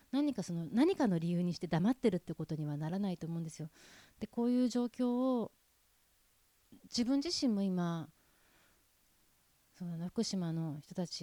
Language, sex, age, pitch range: Japanese, female, 30-49, 160-210 Hz